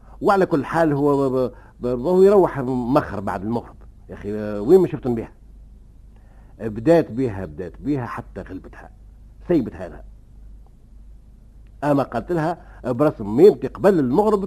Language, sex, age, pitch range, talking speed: Arabic, male, 60-79, 100-145 Hz, 125 wpm